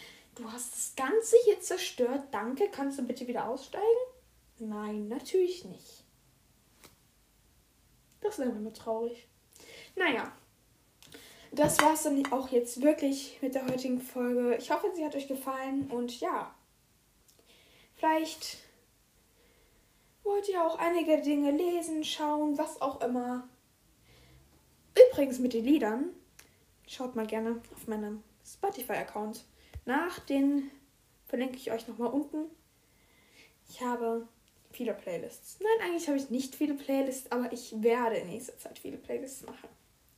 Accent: German